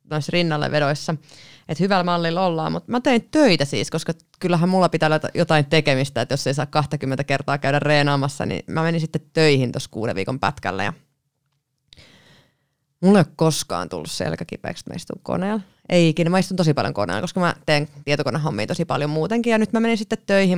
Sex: female